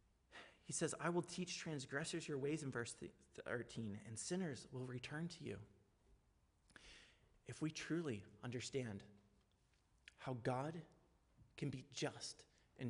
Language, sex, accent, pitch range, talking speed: English, male, American, 110-140 Hz, 125 wpm